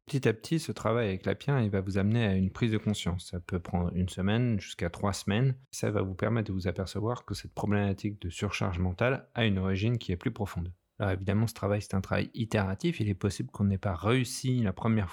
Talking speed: 245 wpm